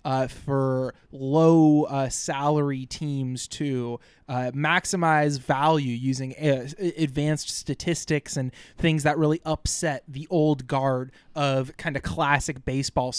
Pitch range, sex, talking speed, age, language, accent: 130-160 Hz, male, 125 wpm, 20-39, English, American